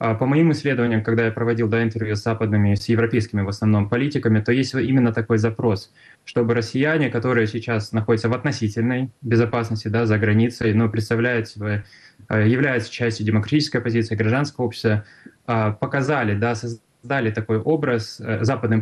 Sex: male